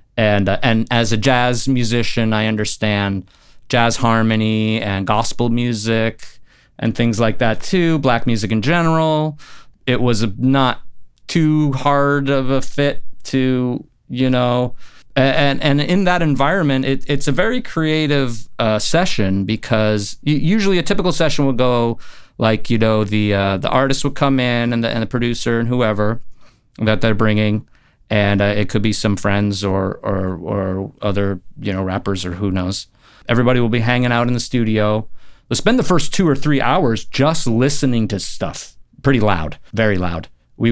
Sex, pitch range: male, 110-135 Hz